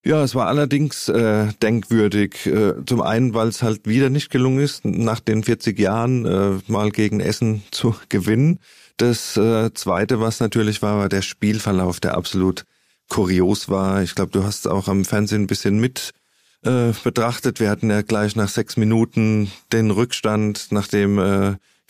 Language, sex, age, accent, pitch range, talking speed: German, male, 40-59, German, 100-115 Hz, 175 wpm